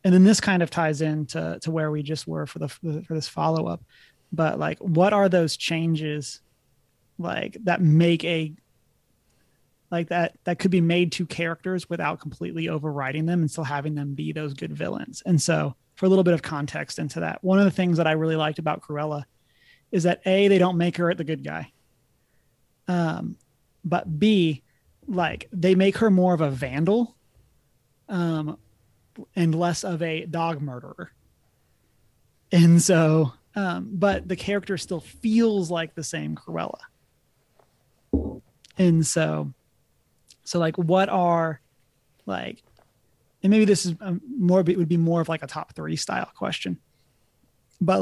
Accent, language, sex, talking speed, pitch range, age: American, English, male, 165 wpm, 150-180 Hz, 30-49